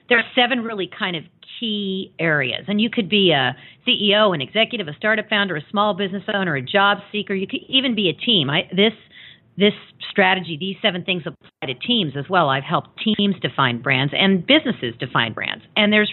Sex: female